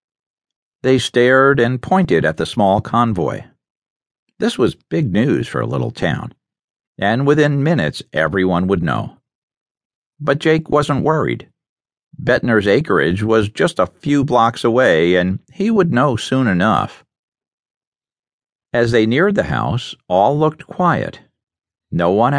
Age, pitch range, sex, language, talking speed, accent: 50-69, 95-150 Hz, male, English, 135 wpm, American